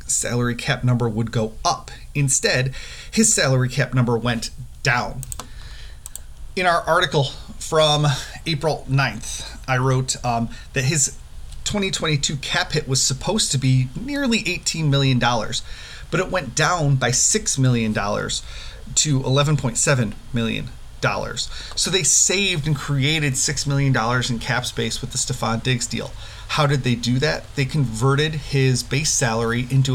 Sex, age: male, 30-49